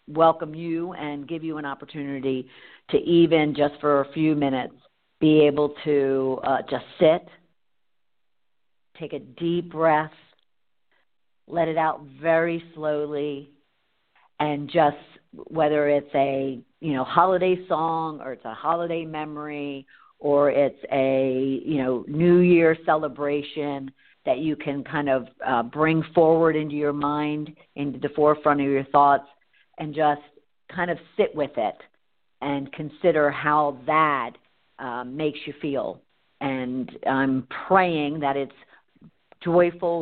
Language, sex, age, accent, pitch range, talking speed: English, female, 50-69, American, 140-165 Hz, 135 wpm